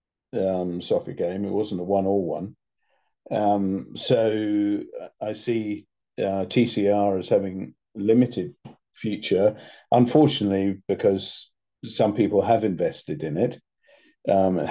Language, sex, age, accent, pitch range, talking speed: English, male, 50-69, British, 95-115 Hz, 115 wpm